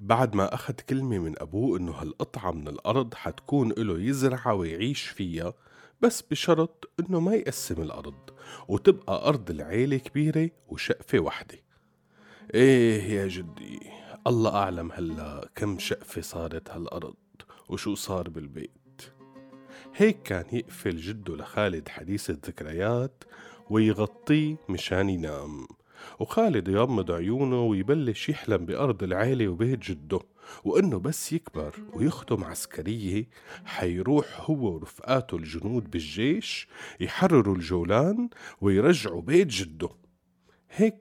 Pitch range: 90-140 Hz